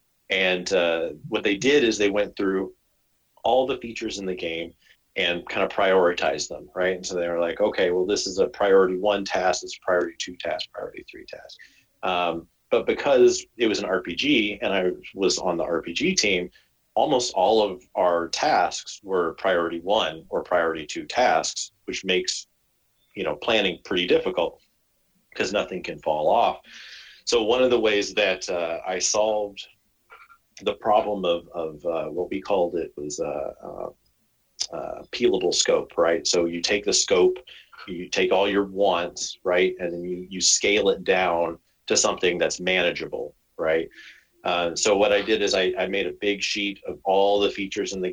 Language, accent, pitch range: English, American, 90-130 Hz